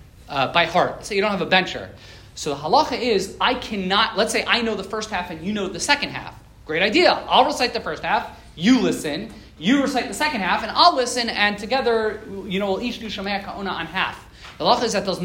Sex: male